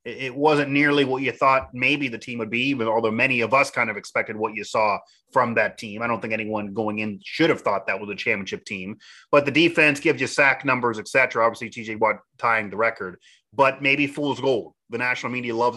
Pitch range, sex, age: 115-140 Hz, male, 30-49